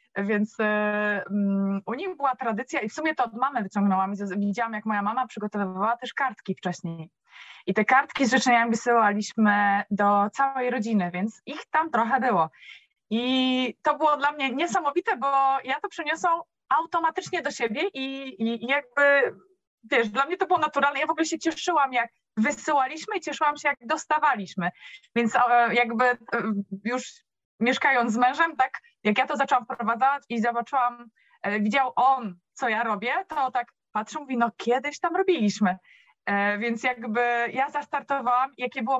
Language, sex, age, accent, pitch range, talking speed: Polish, female, 20-39, native, 230-285 Hz, 165 wpm